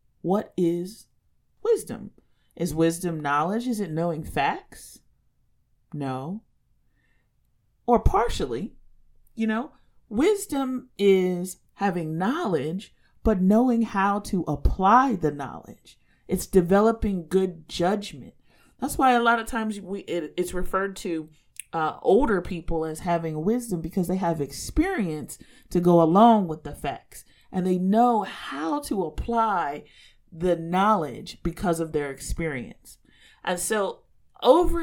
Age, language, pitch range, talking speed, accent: 30-49, English, 170-235 Hz, 125 wpm, American